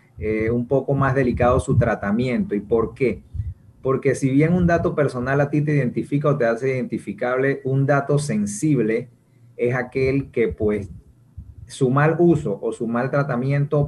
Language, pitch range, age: Spanish, 115-140 Hz, 30-49